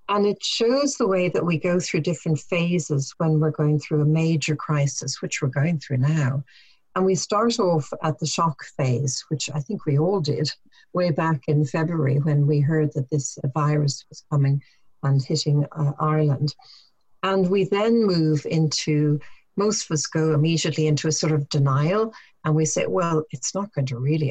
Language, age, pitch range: English, 60-79, 145-170 Hz